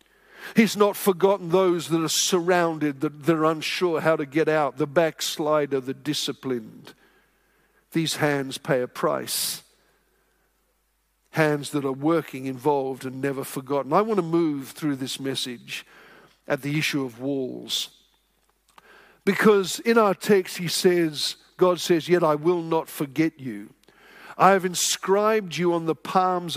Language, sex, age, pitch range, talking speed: English, male, 50-69, 140-175 Hz, 145 wpm